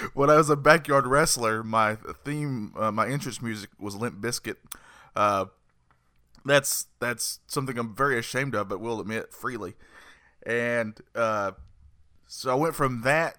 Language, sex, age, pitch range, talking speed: English, male, 20-39, 105-135 Hz, 150 wpm